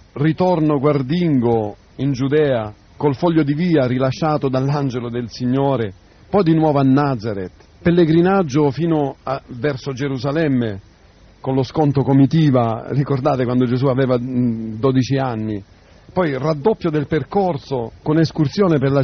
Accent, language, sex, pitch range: native, Italian, male, 120-155 Hz